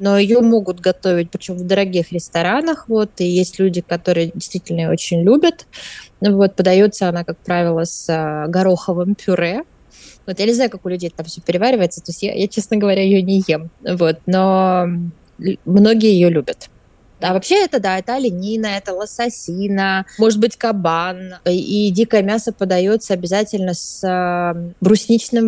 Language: Russian